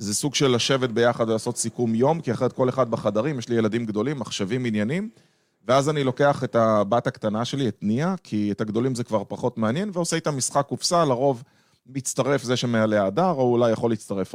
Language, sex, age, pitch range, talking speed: Hebrew, male, 30-49, 105-135 Hz, 200 wpm